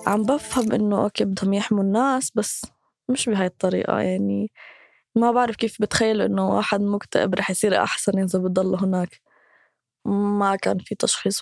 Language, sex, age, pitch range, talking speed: Arabic, female, 20-39, 200-245 Hz, 150 wpm